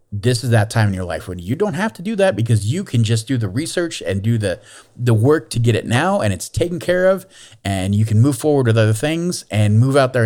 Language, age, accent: English, 30-49, American